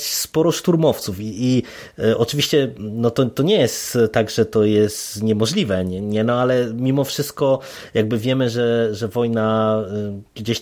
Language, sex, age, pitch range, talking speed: Polish, male, 20-39, 110-125 Hz, 165 wpm